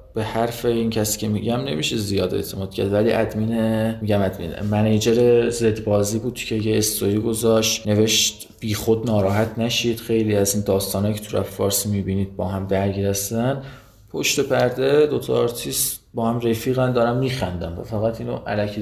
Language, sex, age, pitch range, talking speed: Persian, male, 20-39, 105-120 Hz, 165 wpm